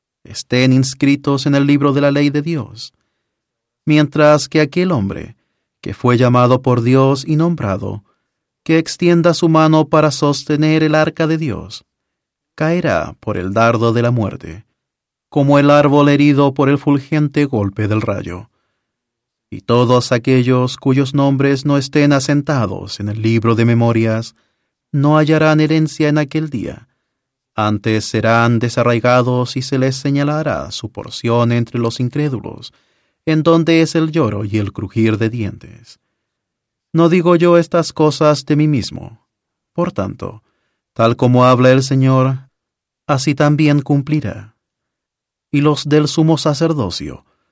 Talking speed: 140 wpm